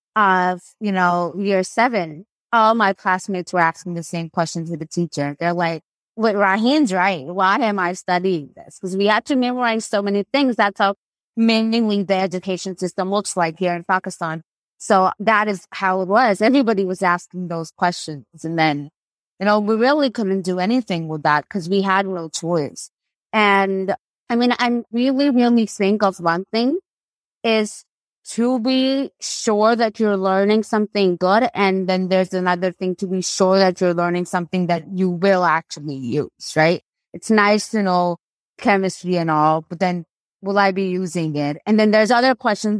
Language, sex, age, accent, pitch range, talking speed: English, female, 20-39, American, 180-220 Hz, 180 wpm